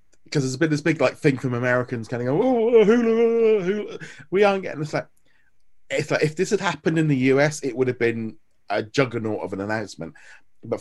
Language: English